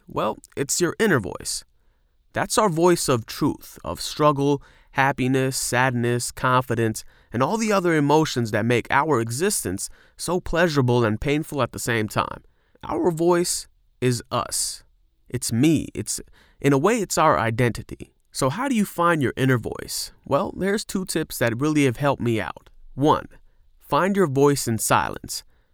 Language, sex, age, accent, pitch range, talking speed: English, male, 30-49, American, 120-155 Hz, 160 wpm